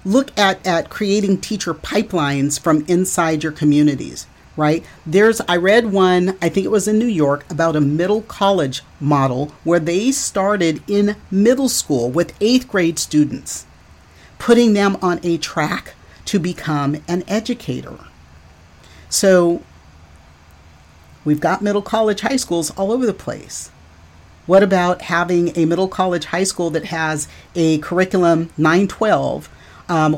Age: 40-59